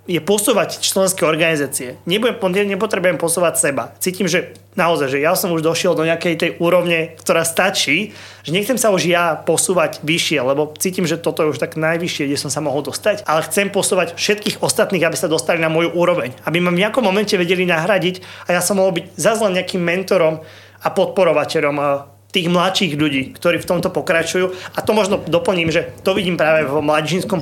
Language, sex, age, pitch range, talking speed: Slovak, male, 30-49, 160-190 Hz, 190 wpm